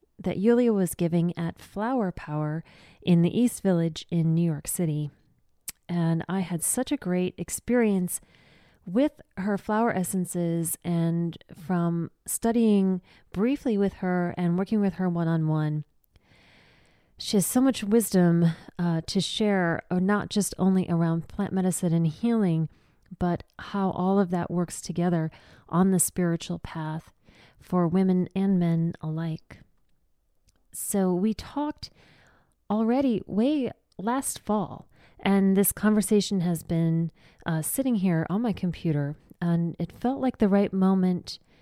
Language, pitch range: English, 165-200 Hz